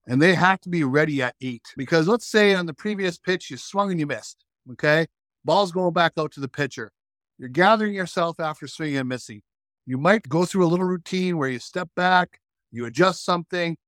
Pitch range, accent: 135-180 Hz, American